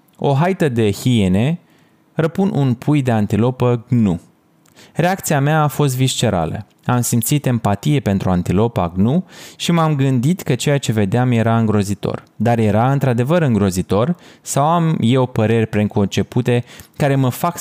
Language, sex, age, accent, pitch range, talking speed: Romanian, male, 20-39, native, 105-140 Hz, 145 wpm